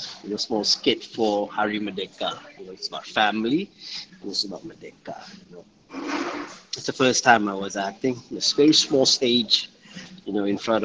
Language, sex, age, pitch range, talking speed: English, male, 30-49, 105-140 Hz, 190 wpm